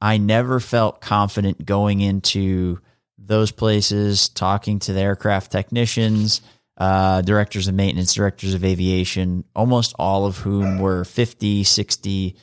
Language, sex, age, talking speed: English, male, 30-49, 130 wpm